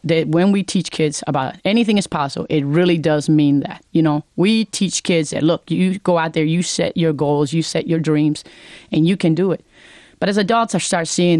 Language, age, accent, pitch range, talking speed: English, 30-49, American, 155-185 Hz, 230 wpm